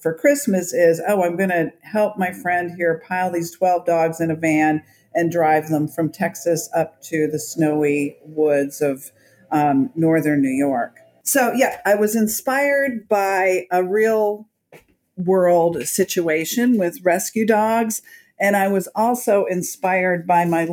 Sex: female